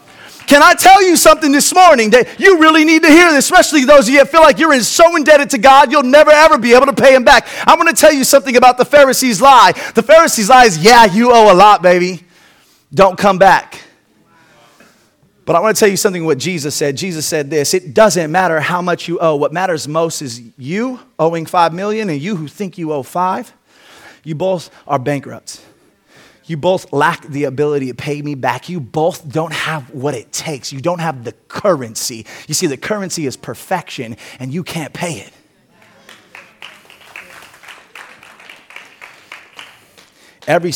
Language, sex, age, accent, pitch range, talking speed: English, male, 30-49, American, 140-230 Hz, 190 wpm